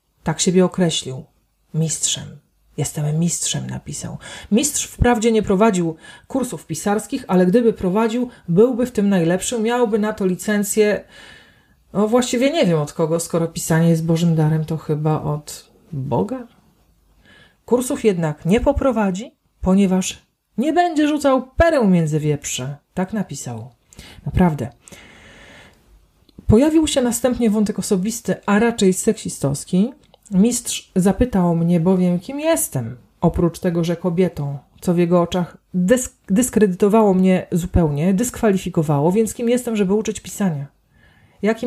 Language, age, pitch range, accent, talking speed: Polish, 40-59, 160-220 Hz, native, 125 wpm